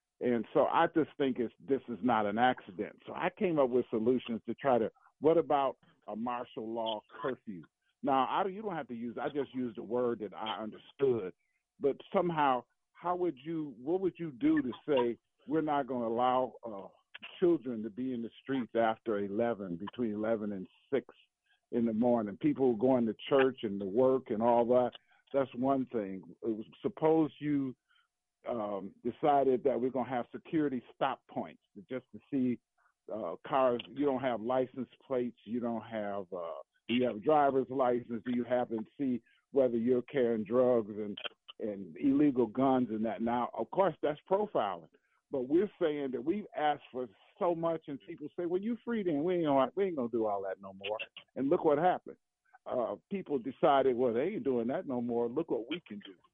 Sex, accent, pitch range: male, American, 115-145 Hz